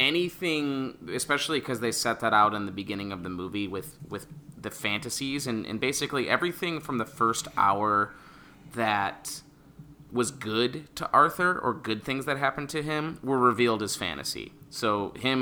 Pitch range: 110-145 Hz